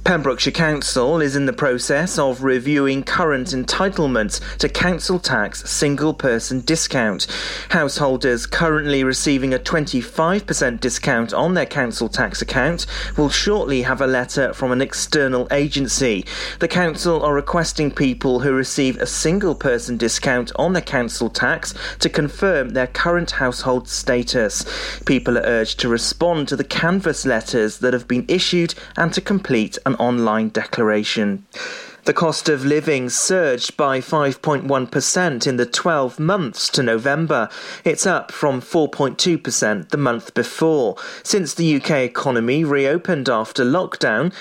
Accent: British